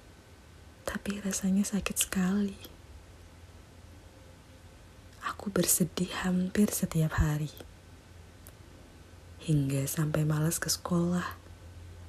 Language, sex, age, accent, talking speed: Indonesian, female, 20-39, native, 70 wpm